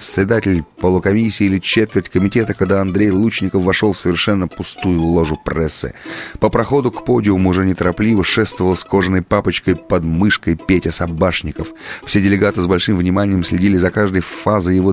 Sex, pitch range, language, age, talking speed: male, 85-100 Hz, Russian, 30-49, 155 wpm